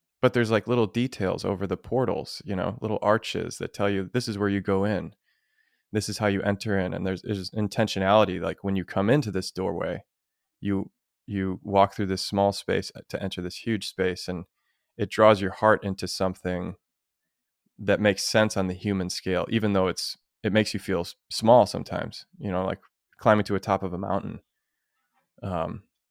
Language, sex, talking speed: English, male, 195 wpm